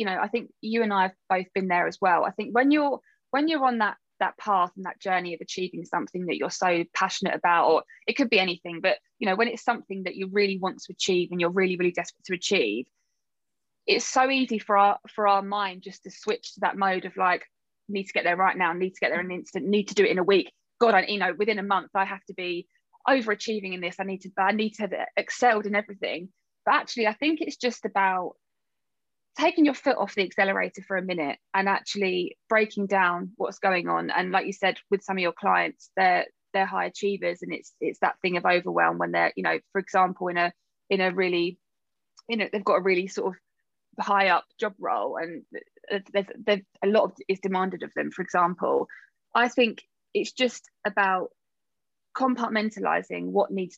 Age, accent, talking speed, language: 20-39, British, 225 wpm, English